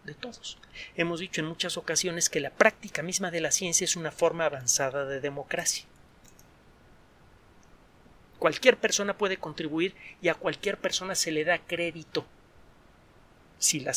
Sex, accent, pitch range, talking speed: male, Mexican, 145-185 Hz, 140 wpm